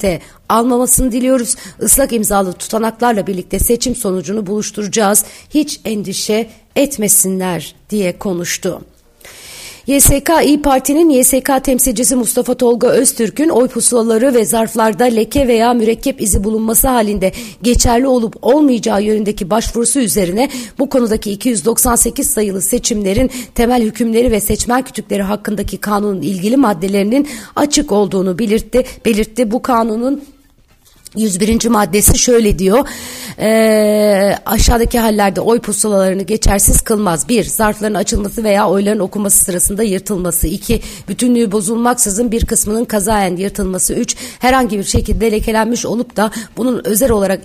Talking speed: 120 wpm